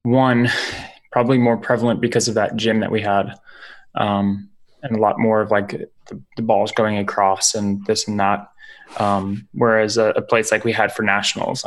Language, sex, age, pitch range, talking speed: English, male, 20-39, 105-125 Hz, 190 wpm